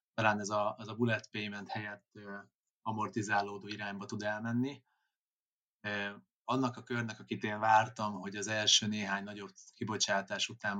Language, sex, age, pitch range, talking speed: Hungarian, male, 30-49, 100-120 Hz, 150 wpm